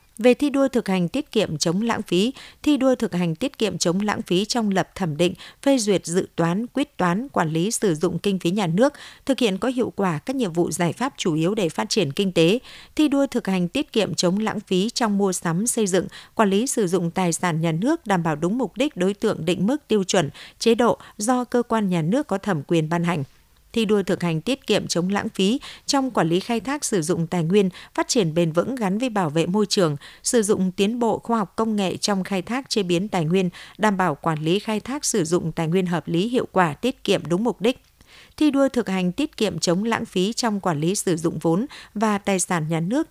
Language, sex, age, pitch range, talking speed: Vietnamese, female, 60-79, 175-230 Hz, 250 wpm